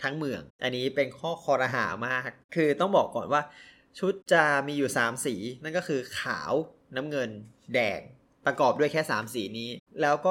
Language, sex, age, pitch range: Thai, male, 20-39, 125-160 Hz